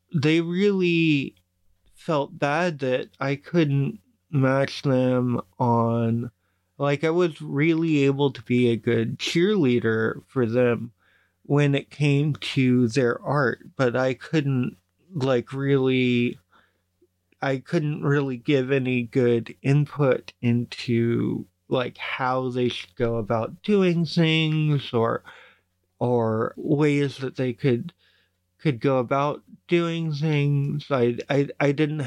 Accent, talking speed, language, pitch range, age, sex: American, 120 wpm, English, 120-150 Hz, 30-49, male